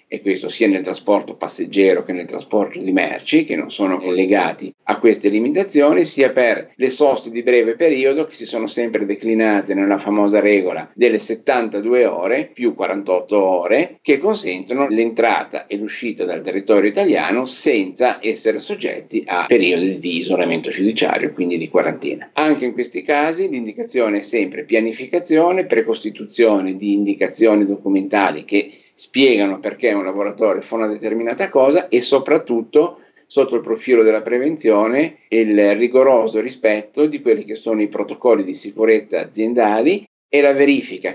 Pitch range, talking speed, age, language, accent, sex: 105-150 Hz, 145 wpm, 50-69, Italian, native, male